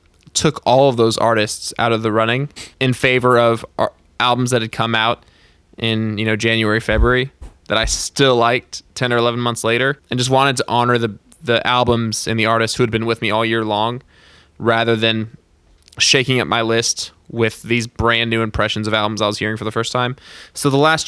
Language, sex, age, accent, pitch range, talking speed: English, male, 20-39, American, 105-120 Hz, 210 wpm